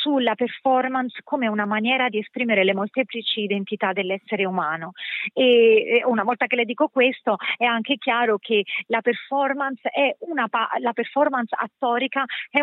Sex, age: female, 30-49